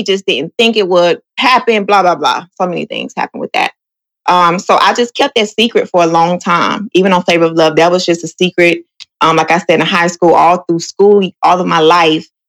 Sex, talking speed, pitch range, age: female, 240 wpm, 170-230 Hz, 20-39